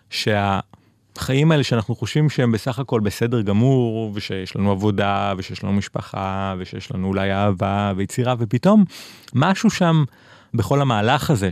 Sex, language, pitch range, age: male, Hebrew, 105-140 Hz, 30-49